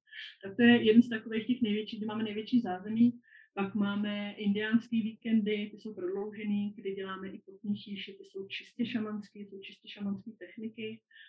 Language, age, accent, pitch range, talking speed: Czech, 30-49, native, 195-220 Hz, 175 wpm